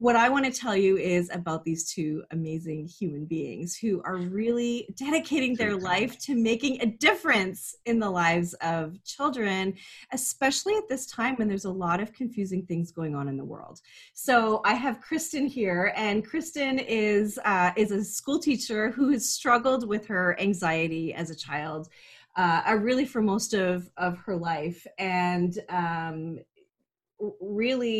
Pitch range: 170-230 Hz